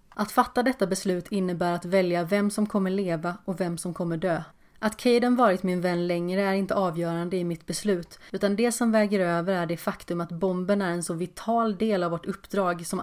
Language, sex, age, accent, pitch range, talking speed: Swedish, female, 30-49, native, 175-205 Hz, 215 wpm